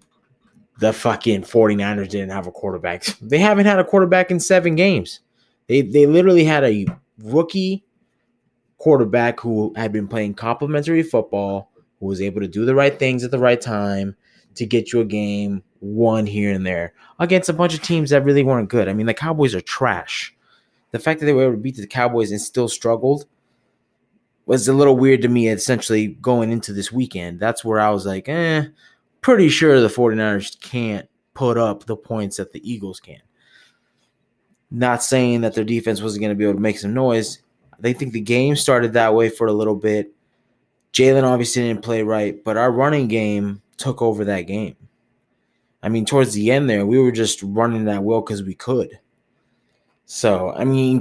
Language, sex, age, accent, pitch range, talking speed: English, male, 20-39, American, 105-135 Hz, 190 wpm